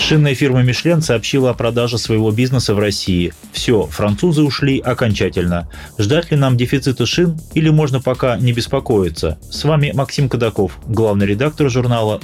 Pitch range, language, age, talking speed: 105-145 Hz, Russian, 30-49, 150 wpm